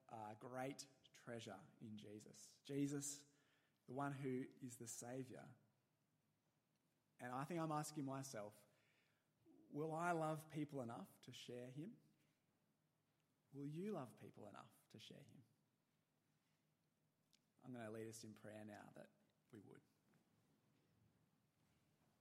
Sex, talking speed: male, 120 wpm